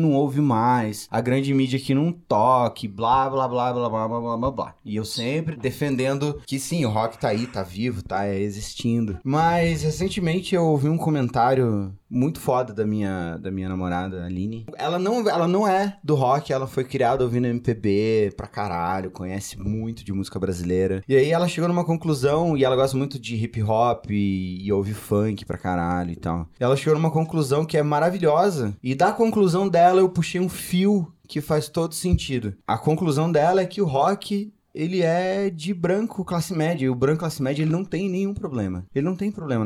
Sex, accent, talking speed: male, Brazilian, 200 wpm